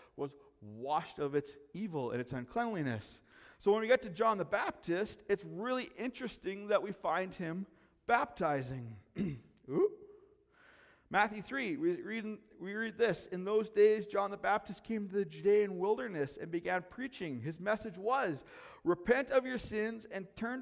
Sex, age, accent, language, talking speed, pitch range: male, 40-59, American, English, 160 wpm, 175-240 Hz